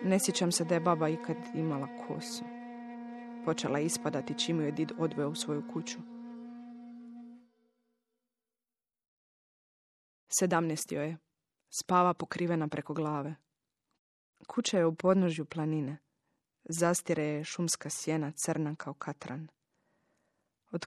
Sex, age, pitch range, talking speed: female, 20-39, 155-220 Hz, 105 wpm